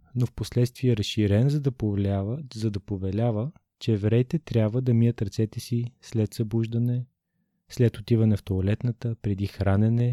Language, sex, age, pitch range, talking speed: Bulgarian, male, 20-39, 100-125 Hz, 150 wpm